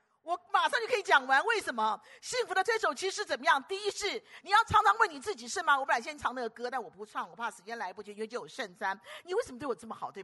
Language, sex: Chinese, female